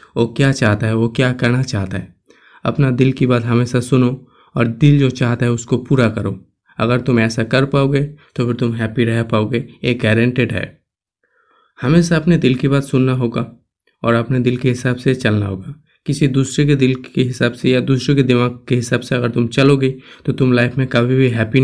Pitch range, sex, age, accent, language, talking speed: 115-135 Hz, male, 20-39, native, Hindi, 210 wpm